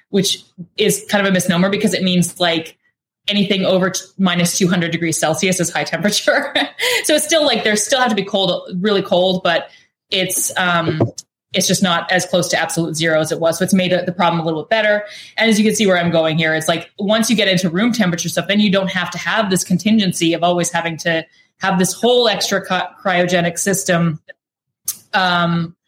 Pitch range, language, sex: 170-200 Hz, English, female